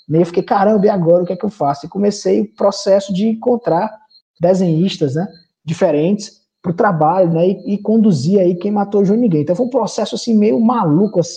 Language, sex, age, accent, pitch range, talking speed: Portuguese, male, 20-39, Brazilian, 165-215 Hz, 195 wpm